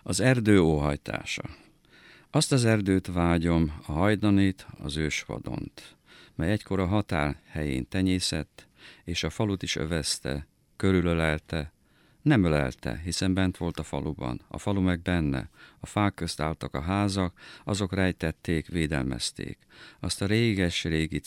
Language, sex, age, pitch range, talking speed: Hungarian, male, 50-69, 80-95 Hz, 135 wpm